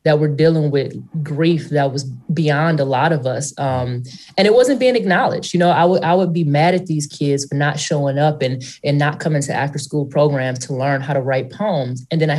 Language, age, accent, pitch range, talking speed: English, 20-39, American, 145-175 Hz, 240 wpm